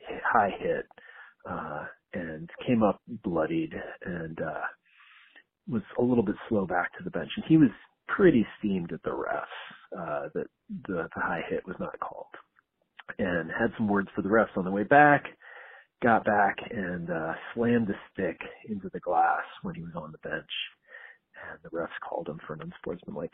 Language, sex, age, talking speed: English, male, 40-59, 180 wpm